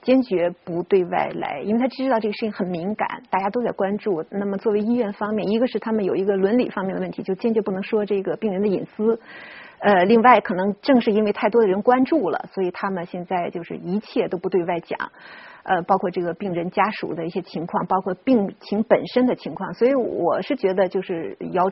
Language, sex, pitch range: Chinese, female, 195-255 Hz